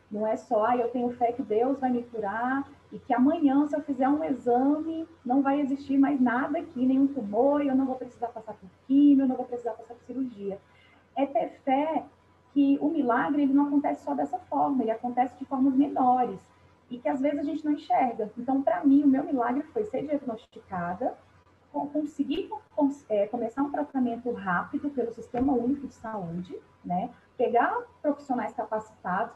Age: 30-49